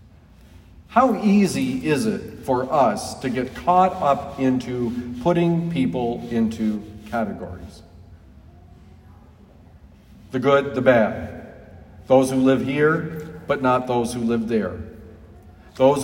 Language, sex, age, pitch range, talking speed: English, male, 50-69, 90-145 Hz, 110 wpm